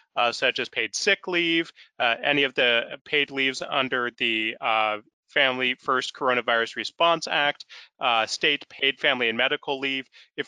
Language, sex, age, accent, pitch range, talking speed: English, male, 30-49, American, 130-165 Hz, 160 wpm